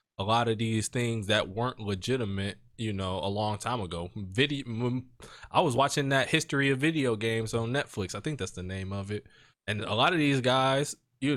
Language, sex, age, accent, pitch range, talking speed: English, male, 20-39, American, 105-130 Hz, 205 wpm